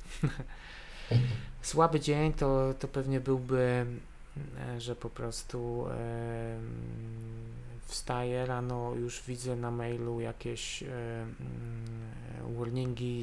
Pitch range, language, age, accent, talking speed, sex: 115-125 Hz, Polish, 20-39, native, 75 wpm, male